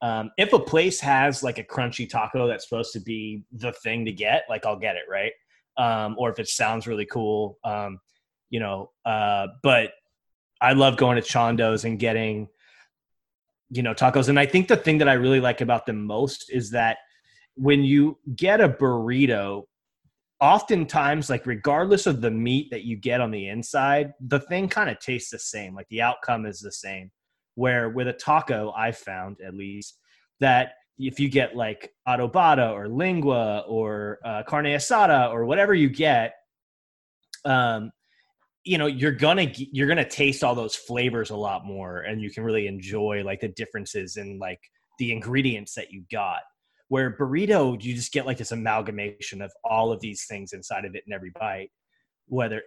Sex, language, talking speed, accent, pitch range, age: male, English, 185 wpm, American, 105-135 Hz, 20-39